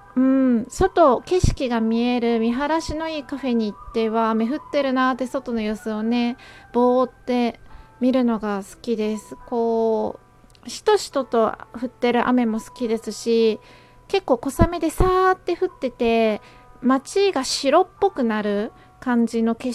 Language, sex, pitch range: Japanese, female, 225-275 Hz